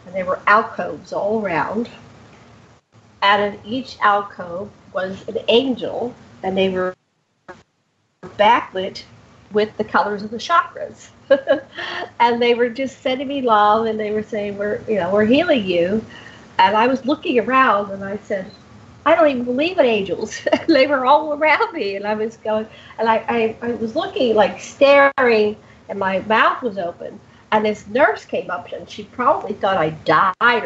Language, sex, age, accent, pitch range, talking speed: English, female, 50-69, American, 190-255 Hz, 170 wpm